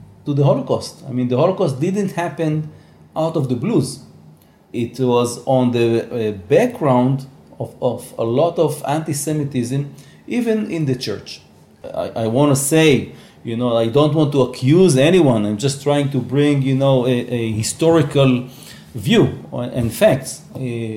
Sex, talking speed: male, 155 wpm